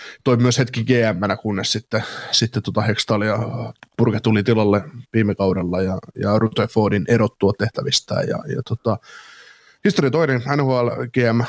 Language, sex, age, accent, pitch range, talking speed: Finnish, male, 20-39, native, 110-125 Hz, 125 wpm